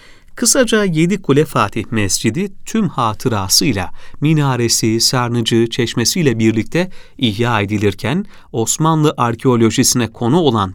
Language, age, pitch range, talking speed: Turkish, 40-59, 110-155 Hz, 95 wpm